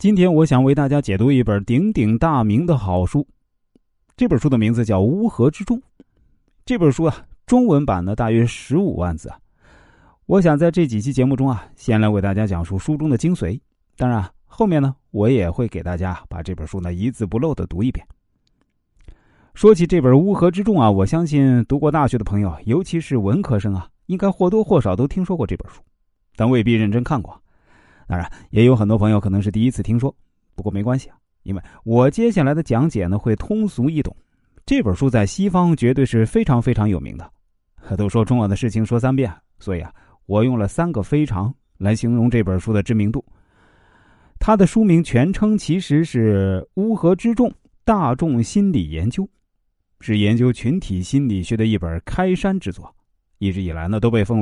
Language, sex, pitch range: Chinese, male, 100-145 Hz